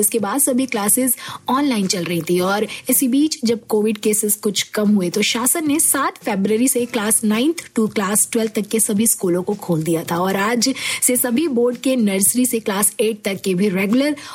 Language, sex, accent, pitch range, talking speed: Hindi, female, native, 210-260 Hz, 210 wpm